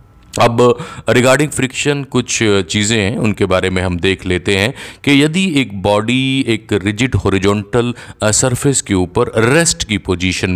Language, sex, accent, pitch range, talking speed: Hindi, male, native, 95-120 Hz, 150 wpm